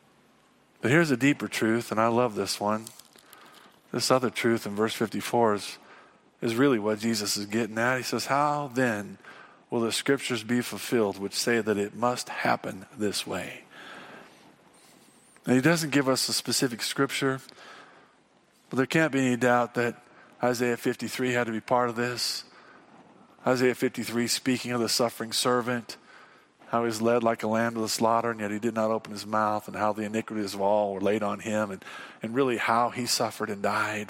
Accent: American